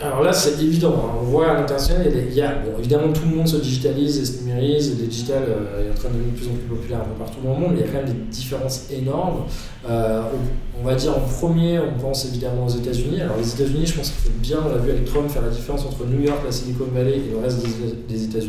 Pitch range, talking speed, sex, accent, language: 115-145 Hz, 290 wpm, male, French, French